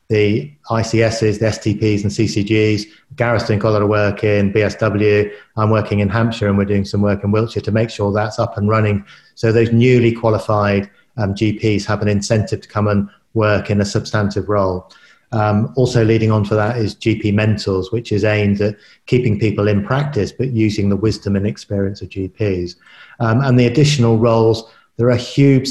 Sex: male